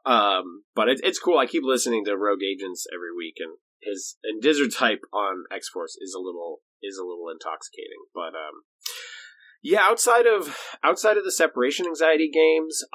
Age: 30-49